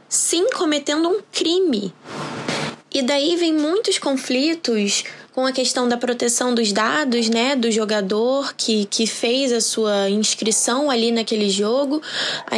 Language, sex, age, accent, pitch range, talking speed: Portuguese, female, 10-29, Brazilian, 220-265 Hz, 140 wpm